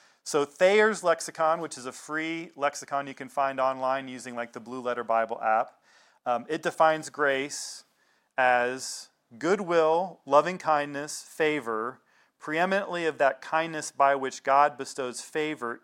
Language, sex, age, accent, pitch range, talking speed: English, male, 40-59, American, 130-165 Hz, 140 wpm